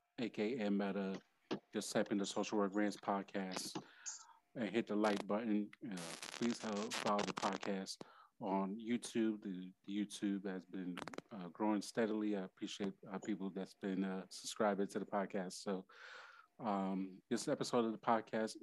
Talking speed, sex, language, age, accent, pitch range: 160 wpm, male, English, 30-49, American, 95-105 Hz